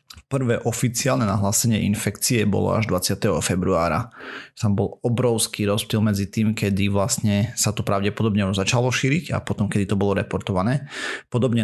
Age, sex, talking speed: 30-49, male, 150 wpm